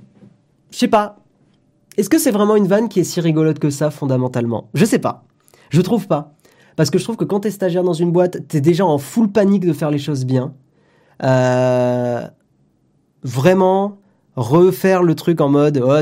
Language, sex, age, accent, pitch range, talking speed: French, male, 20-39, French, 140-185 Hz, 190 wpm